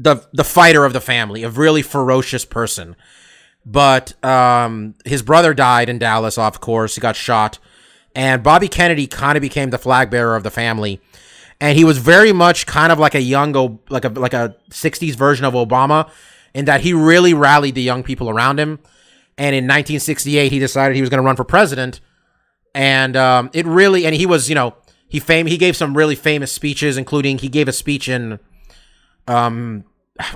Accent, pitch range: American, 125-155 Hz